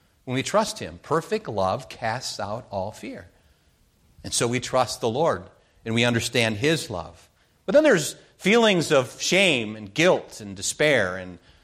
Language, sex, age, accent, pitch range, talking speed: English, male, 40-59, American, 110-155 Hz, 165 wpm